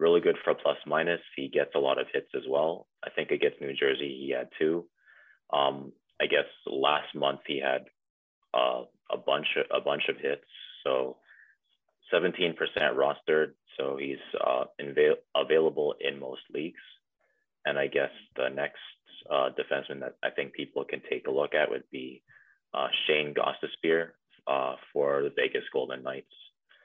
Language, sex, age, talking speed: English, male, 30-49, 170 wpm